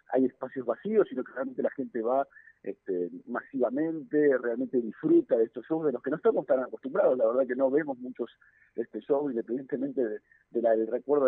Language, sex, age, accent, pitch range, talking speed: Spanish, male, 50-69, Argentinian, 120-160 Hz, 190 wpm